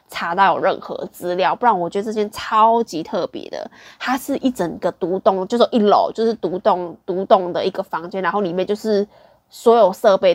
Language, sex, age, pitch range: Chinese, female, 20-39, 185-230 Hz